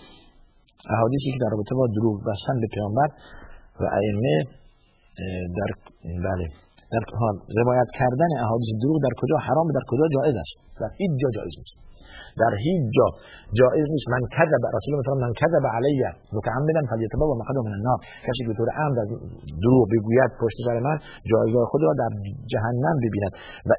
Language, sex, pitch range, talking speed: Persian, male, 105-140 Hz, 170 wpm